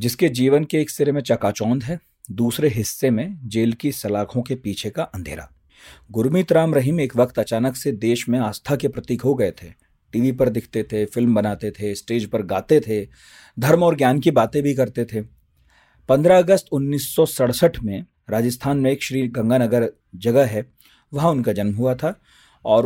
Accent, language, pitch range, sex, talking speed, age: native, Hindi, 110-145 Hz, male, 180 wpm, 40-59